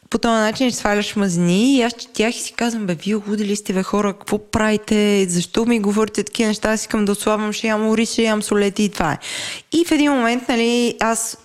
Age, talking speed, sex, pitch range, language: 20-39, 220 wpm, female, 175-230 Hz, Bulgarian